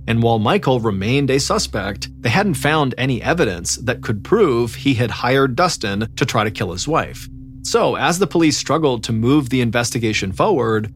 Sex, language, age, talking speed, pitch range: male, English, 30-49, 185 wpm, 110-135 Hz